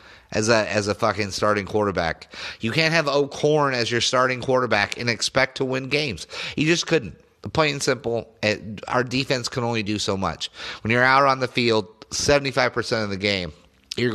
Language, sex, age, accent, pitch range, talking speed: English, male, 30-49, American, 105-130 Hz, 190 wpm